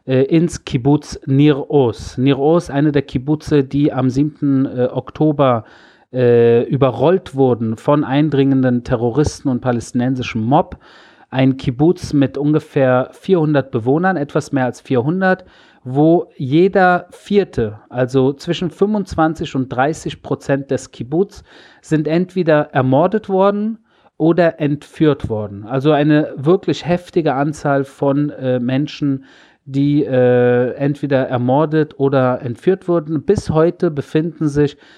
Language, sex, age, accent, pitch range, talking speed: German, male, 40-59, German, 130-160 Hz, 115 wpm